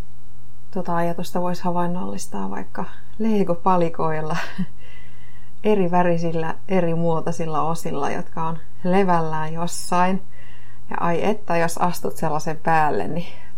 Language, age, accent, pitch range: Finnish, 30-49, native, 125-180 Hz